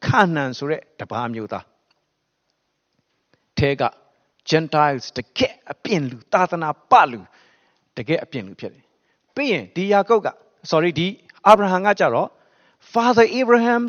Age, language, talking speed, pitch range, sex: 60-79, English, 110 wpm, 130-200 Hz, male